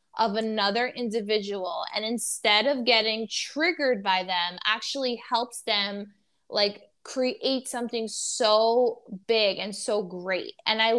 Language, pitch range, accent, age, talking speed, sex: English, 200-245 Hz, American, 20-39, 125 wpm, female